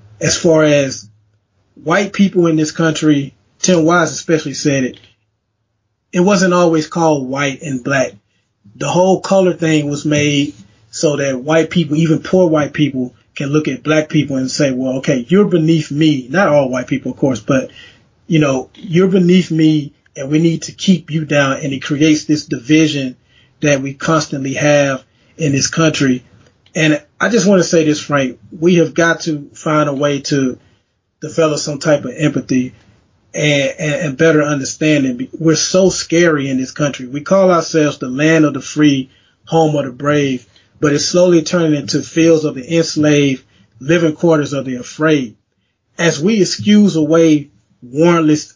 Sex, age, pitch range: male, 30-49, 130-160 Hz